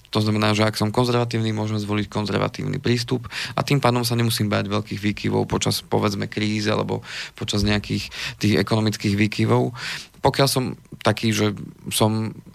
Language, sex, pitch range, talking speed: Slovak, male, 105-115 Hz, 155 wpm